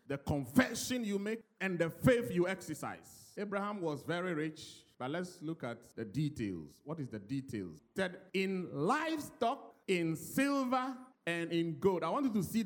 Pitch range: 140-215 Hz